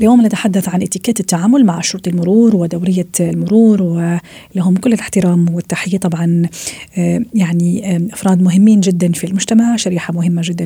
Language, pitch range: Arabic, 180-210 Hz